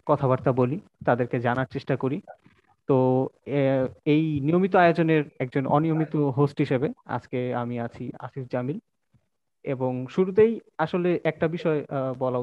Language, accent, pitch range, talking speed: Bengali, native, 125-150 Hz, 120 wpm